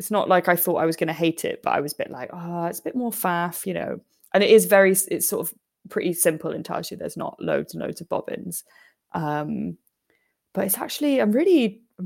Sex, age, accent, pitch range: female, 20-39, British, 155-185 Hz